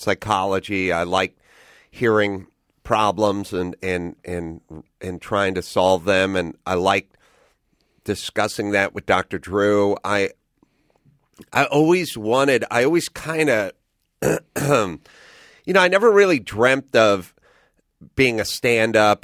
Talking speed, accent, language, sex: 125 wpm, American, English, male